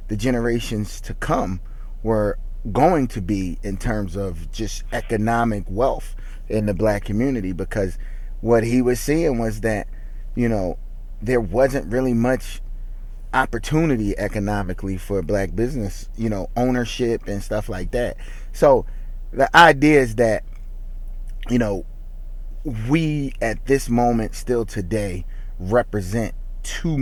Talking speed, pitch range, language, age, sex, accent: 130 wpm, 100-120 Hz, English, 30-49, male, American